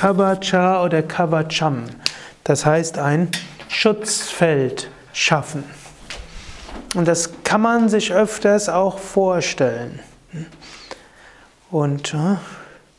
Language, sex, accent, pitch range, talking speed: German, male, German, 150-190 Hz, 80 wpm